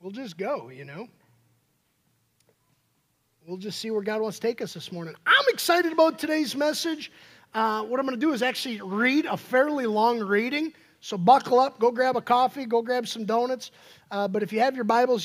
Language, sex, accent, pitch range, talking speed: English, male, American, 195-255 Hz, 205 wpm